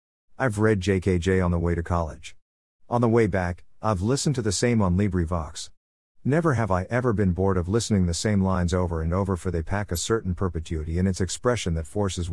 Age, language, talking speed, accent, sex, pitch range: 50-69, English, 215 wpm, American, male, 85-115 Hz